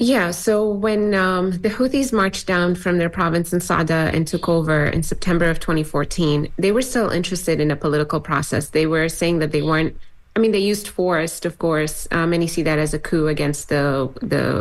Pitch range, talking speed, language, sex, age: 150-180 Hz, 210 wpm, English, female, 20-39